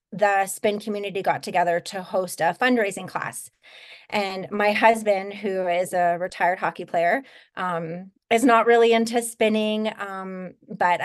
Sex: female